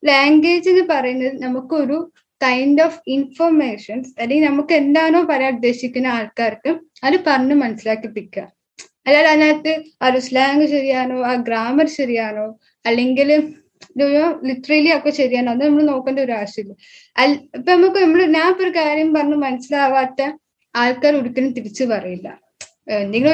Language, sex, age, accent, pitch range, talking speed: Malayalam, female, 10-29, native, 250-315 Hz, 125 wpm